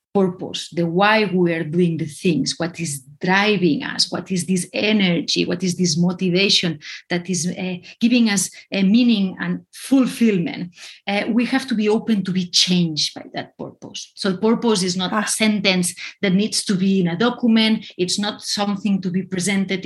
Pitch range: 185-230 Hz